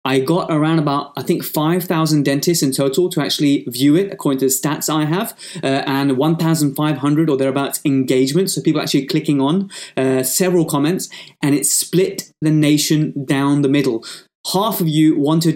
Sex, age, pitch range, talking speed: male, 20-39, 140-160 Hz, 175 wpm